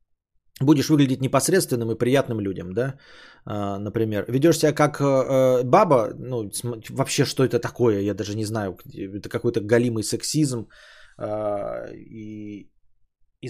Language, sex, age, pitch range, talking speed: Bulgarian, male, 20-39, 115-165 Hz, 125 wpm